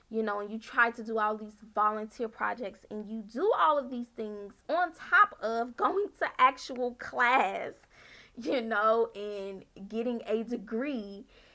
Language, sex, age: English, female, 20-39